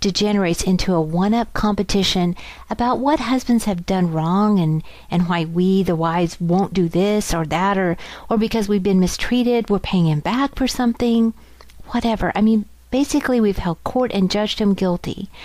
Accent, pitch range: American, 175-230 Hz